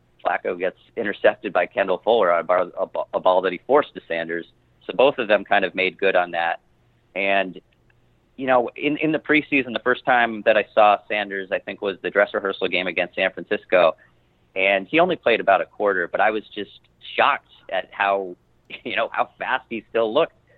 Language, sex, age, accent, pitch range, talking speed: English, male, 30-49, American, 90-110 Hz, 200 wpm